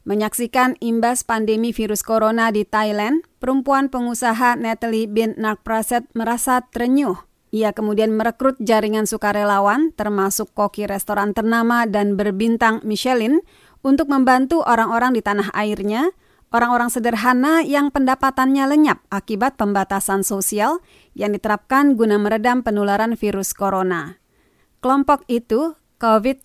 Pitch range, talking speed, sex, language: 210-260 Hz, 115 wpm, female, Indonesian